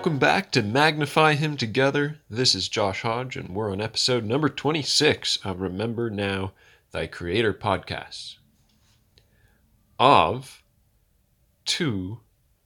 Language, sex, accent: English, male, American